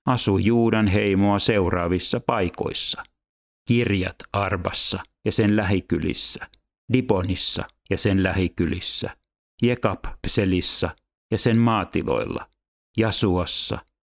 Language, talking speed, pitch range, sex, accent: Finnish, 80 wpm, 90-105 Hz, male, native